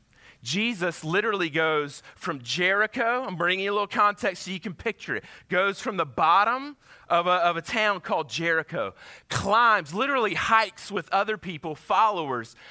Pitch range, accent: 135-200 Hz, American